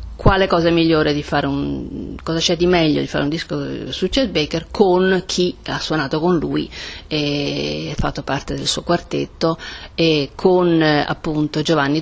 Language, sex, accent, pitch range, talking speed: Italian, female, native, 155-225 Hz, 170 wpm